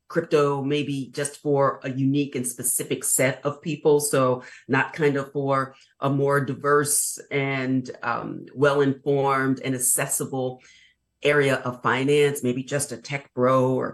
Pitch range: 130-150 Hz